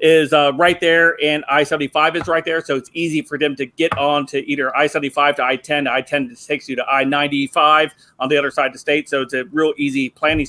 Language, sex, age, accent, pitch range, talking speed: English, male, 40-59, American, 145-185 Hz, 230 wpm